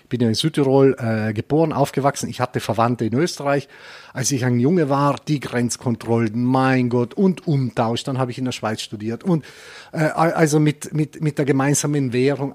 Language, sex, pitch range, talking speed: German, male, 125-155 Hz, 190 wpm